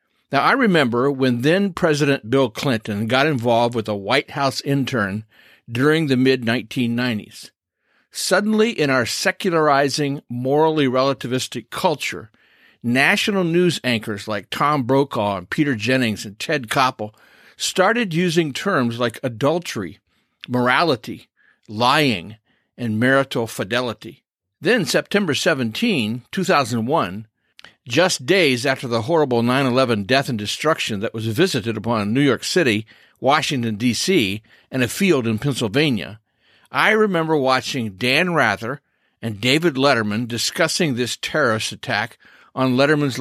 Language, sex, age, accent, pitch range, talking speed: English, male, 50-69, American, 115-155 Hz, 120 wpm